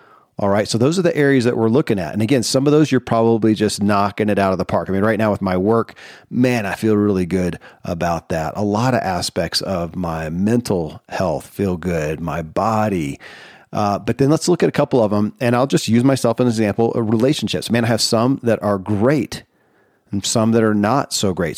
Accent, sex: American, male